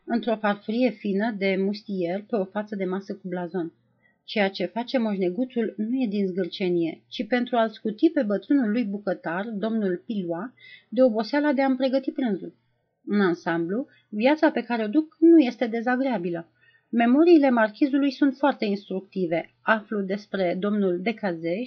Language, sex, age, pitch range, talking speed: Romanian, female, 30-49, 185-250 Hz, 150 wpm